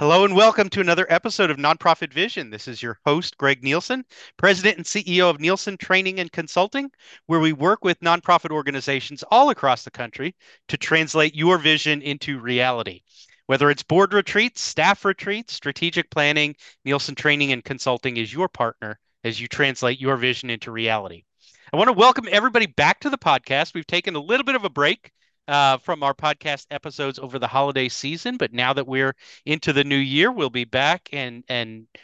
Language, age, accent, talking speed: English, 30-49, American, 185 wpm